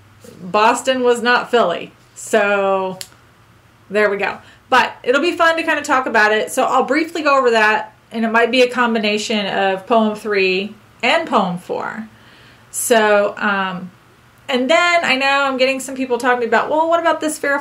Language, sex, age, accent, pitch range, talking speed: English, female, 30-49, American, 200-260 Hz, 180 wpm